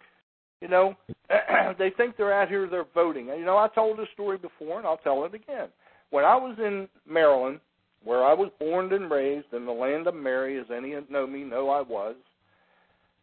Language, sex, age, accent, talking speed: English, male, 60-79, American, 205 wpm